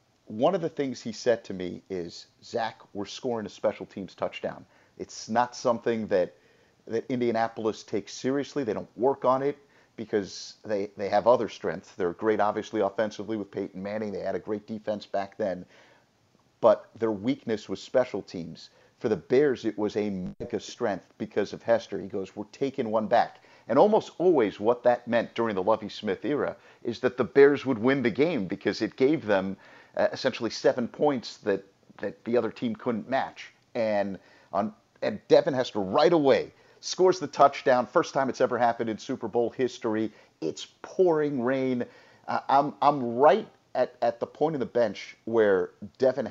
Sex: male